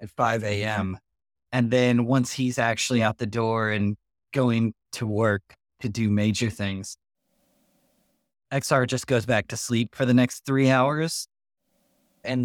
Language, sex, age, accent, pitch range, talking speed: English, male, 20-39, American, 110-130 Hz, 150 wpm